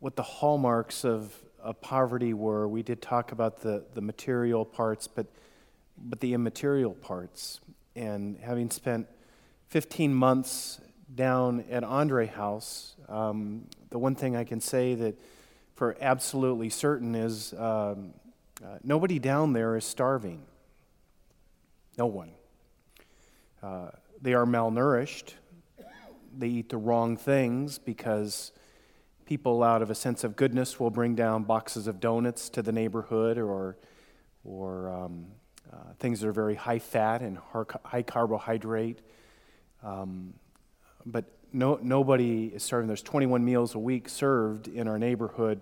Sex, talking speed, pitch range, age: male, 135 wpm, 110-130 Hz, 40-59